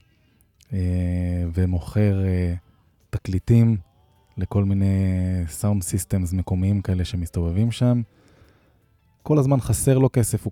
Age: 20-39